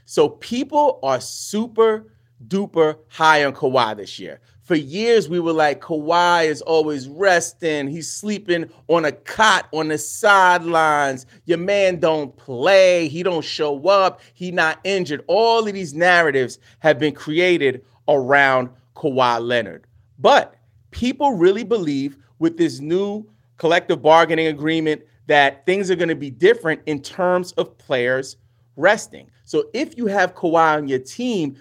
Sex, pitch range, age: male, 135-180 Hz, 30-49